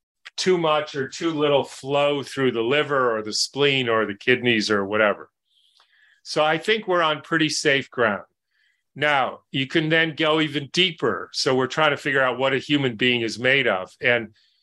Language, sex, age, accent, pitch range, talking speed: English, male, 40-59, American, 130-160 Hz, 190 wpm